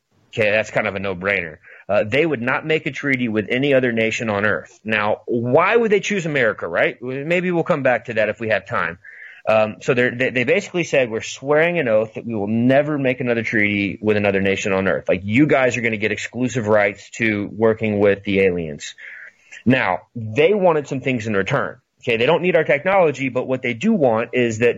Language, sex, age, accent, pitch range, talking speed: English, male, 30-49, American, 110-140 Hz, 225 wpm